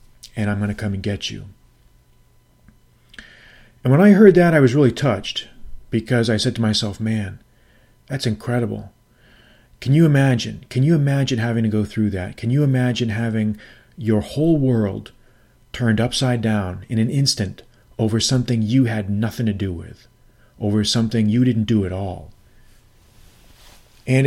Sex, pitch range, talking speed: male, 110-125 Hz, 160 wpm